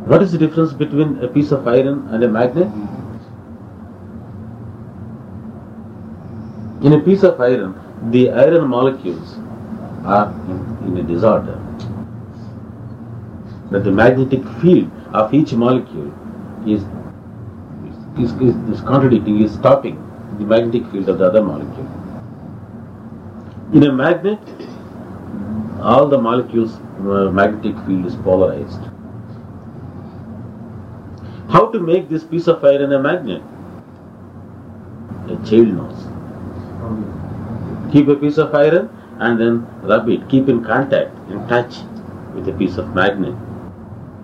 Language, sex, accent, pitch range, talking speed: English, male, Indian, 105-120 Hz, 120 wpm